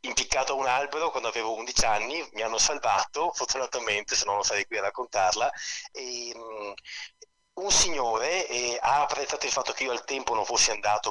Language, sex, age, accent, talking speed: Italian, male, 30-49, native, 190 wpm